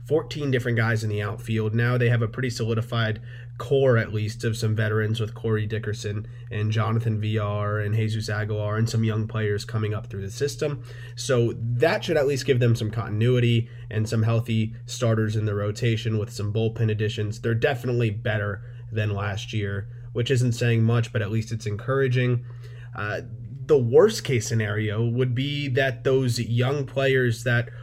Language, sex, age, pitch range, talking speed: English, male, 20-39, 110-125 Hz, 180 wpm